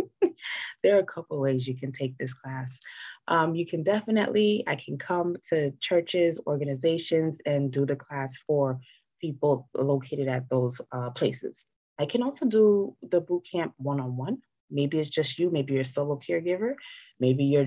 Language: English